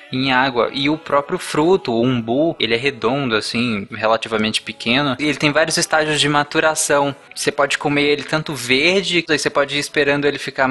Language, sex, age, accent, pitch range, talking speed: Portuguese, male, 20-39, Brazilian, 125-160 Hz, 190 wpm